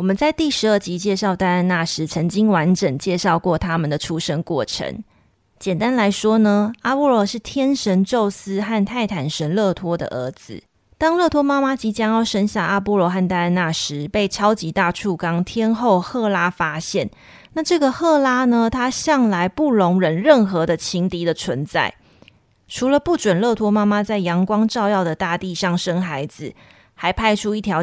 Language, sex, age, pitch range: Chinese, female, 20-39, 175-230 Hz